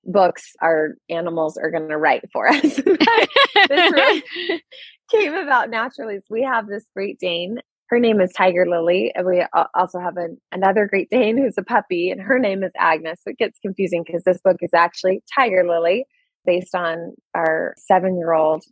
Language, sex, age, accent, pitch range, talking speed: English, female, 20-39, American, 165-225 Hz, 175 wpm